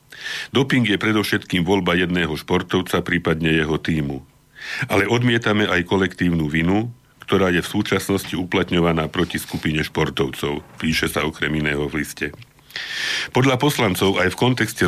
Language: Slovak